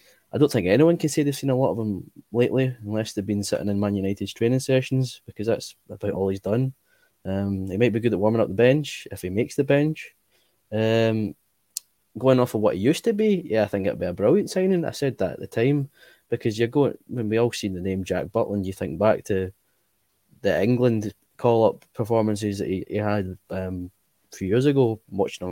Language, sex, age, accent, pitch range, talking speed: English, male, 20-39, British, 100-120 Hz, 230 wpm